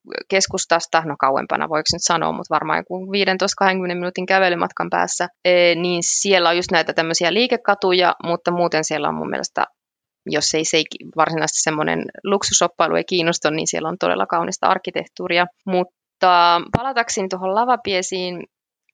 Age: 20-39